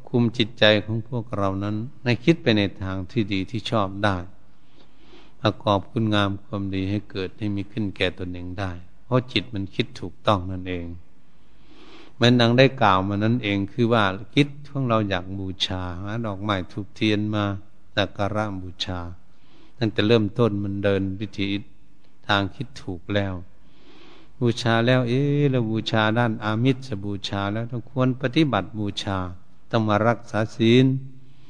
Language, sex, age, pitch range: Thai, male, 70-89, 95-120 Hz